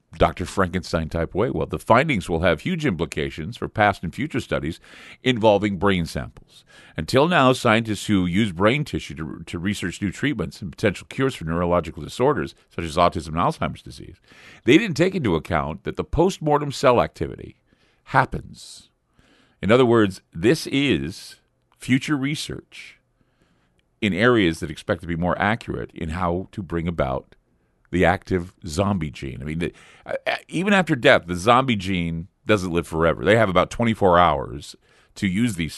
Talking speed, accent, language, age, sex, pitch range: 165 wpm, American, English, 50-69, male, 85-115 Hz